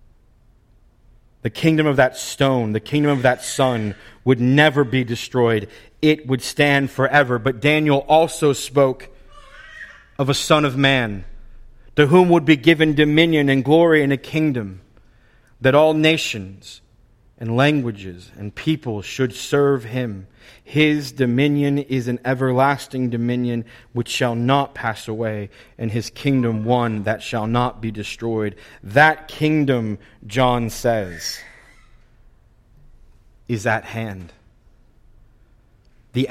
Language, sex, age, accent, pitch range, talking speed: English, male, 30-49, American, 115-150 Hz, 125 wpm